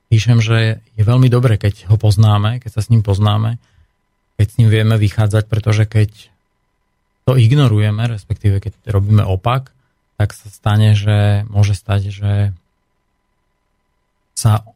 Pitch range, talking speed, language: 100-110 Hz, 140 wpm, Slovak